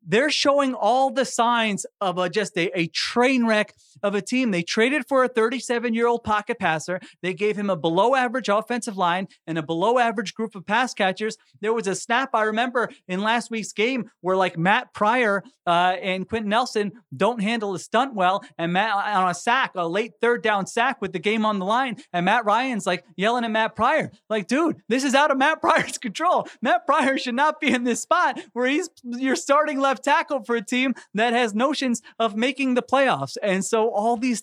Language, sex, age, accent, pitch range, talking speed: English, male, 30-49, American, 190-240 Hz, 215 wpm